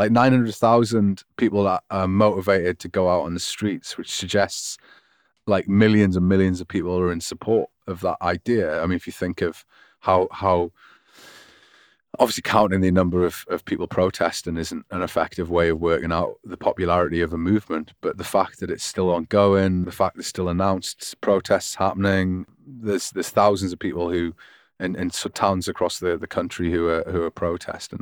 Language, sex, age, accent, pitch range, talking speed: English, male, 30-49, British, 85-105 Hz, 190 wpm